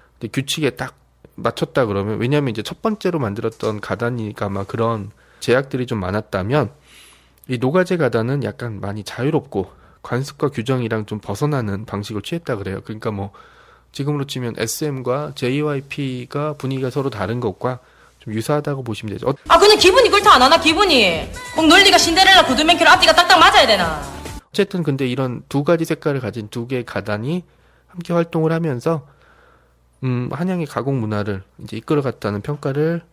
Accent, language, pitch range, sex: native, Korean, 110-170 Hz, male